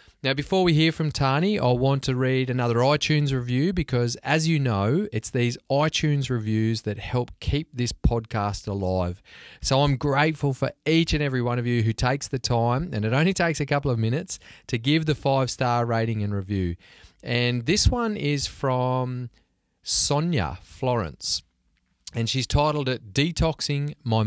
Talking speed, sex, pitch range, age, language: 170 wpm, male, 110-145 Hz, 30-49, English